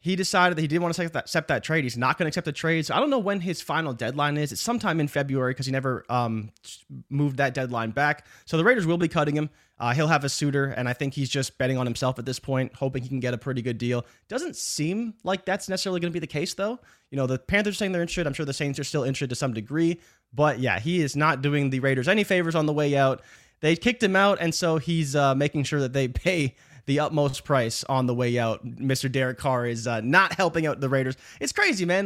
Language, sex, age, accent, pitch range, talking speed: English, male, 20-39, American, 130-170 Hz, 275 wpm